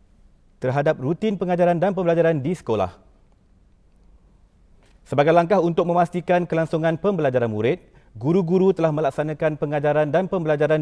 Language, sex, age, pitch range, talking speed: Malay, male, 40-59, 135-185 Hz, 110 wpm